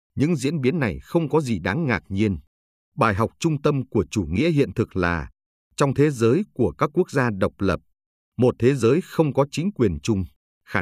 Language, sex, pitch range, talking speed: Vietnamese, male, 100-145 Hz, 210 wpm